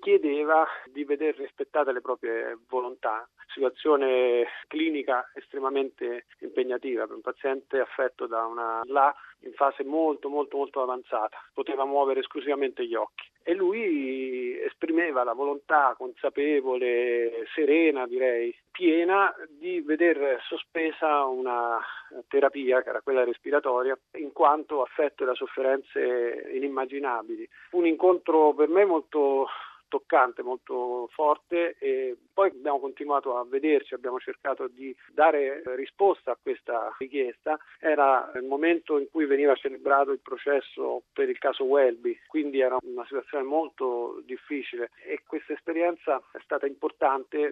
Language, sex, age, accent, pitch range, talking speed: Italian, male, 40-59, native, 130-185 Hz, 125 wpm